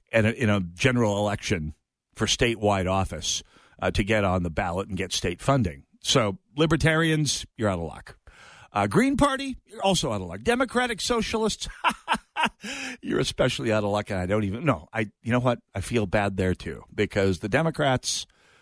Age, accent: 50-69, American